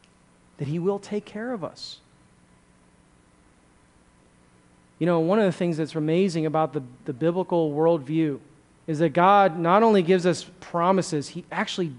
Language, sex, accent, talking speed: English, male, American, 150 wpm